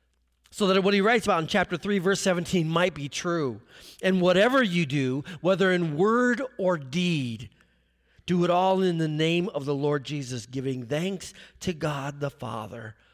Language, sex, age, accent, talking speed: English, male, 40-59, American, 180 wpm